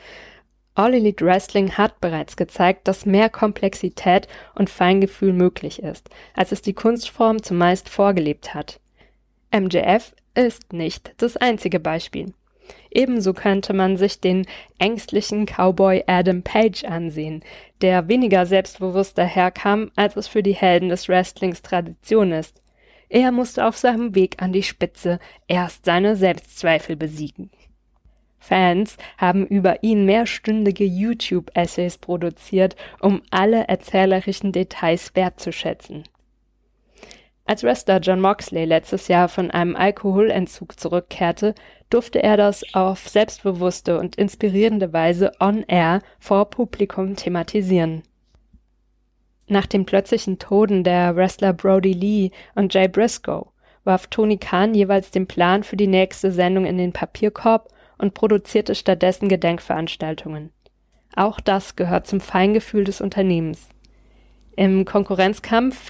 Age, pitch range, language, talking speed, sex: 20-39, 180-205 Hz, German, 120 wpm, female